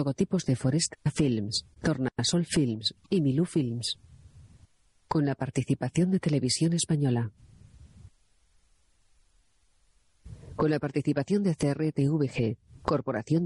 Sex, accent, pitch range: female, Spanish, 115-155 Hz